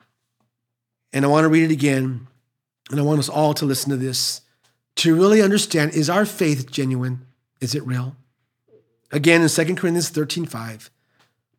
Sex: male